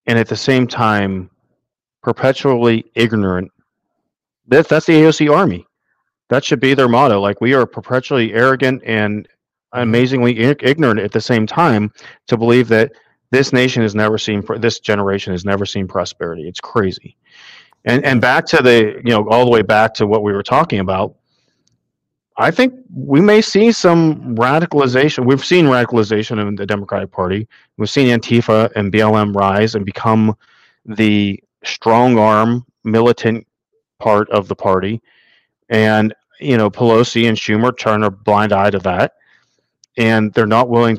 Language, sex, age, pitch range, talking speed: English, male, 40-59, 105-125 Hz, 155 wpm